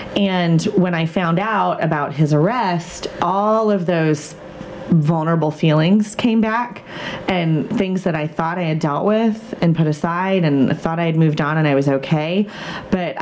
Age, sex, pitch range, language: 30-49, female, 165-205 Hz, English